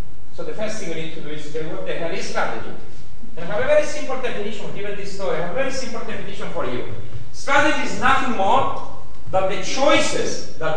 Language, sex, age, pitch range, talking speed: English, male, 40-59, 195-270 Hz, 230 wpm